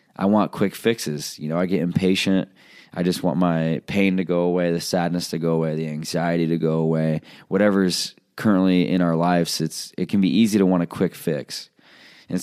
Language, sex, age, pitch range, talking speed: English, male, 20-39, 85-100 Hz, 210 wpm